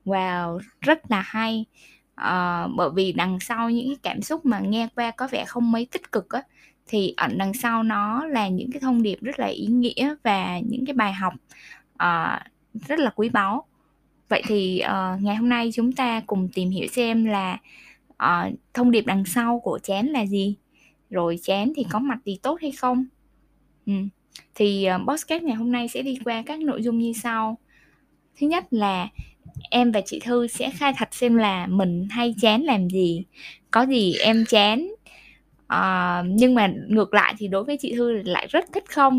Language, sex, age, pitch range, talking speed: Vietnamese, female, 10-29, 195-260 Hz, 195 wpm